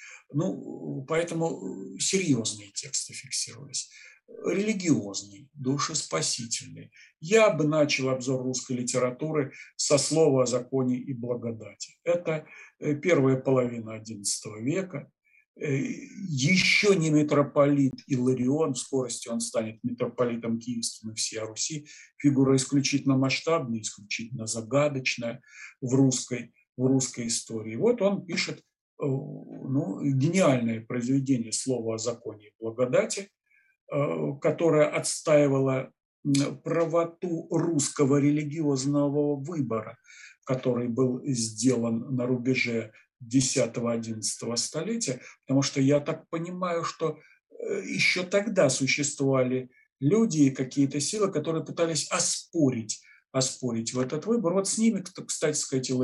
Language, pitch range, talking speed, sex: Russian, 125-155 Hz, 105 wpm, male